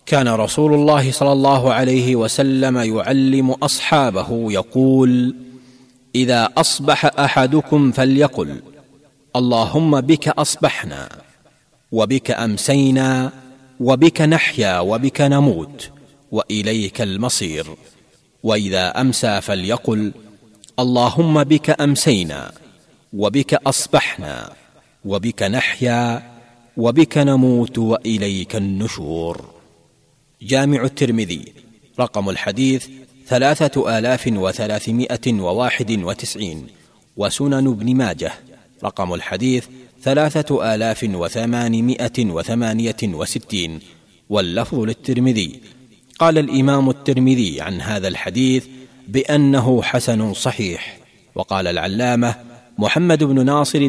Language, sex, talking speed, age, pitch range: Tamil, male, 80 wpm, 40-59, 110-135 Hz